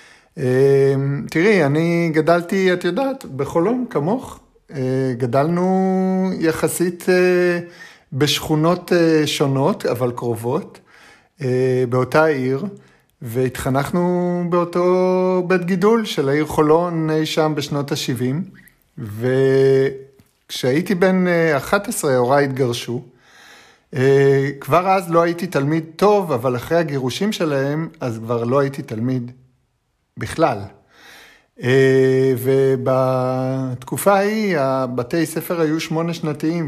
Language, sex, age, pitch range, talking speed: Hebrew, male, 50-69, 130-180 Hz, 100 wpm